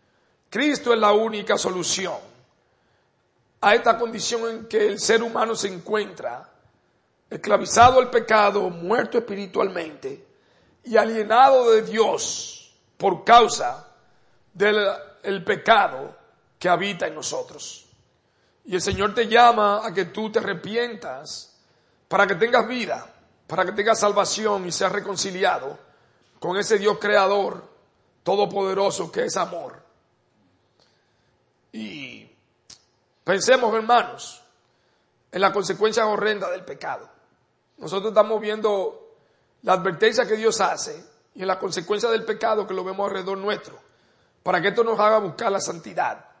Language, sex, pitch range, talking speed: English, male, 195-230 Hz, 125 wpm